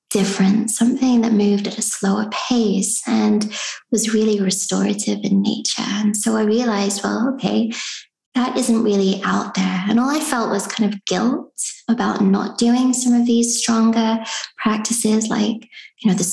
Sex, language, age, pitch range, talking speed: female, English, 20-39, 195-230 Hz, 165 wpm